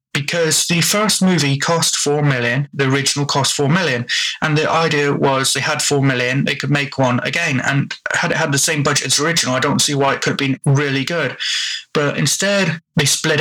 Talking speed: 220 wpm